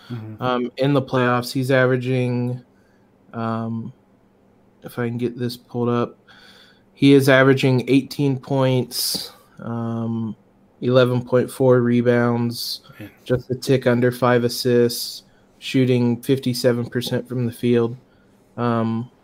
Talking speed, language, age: 110 wpm, English, 20-39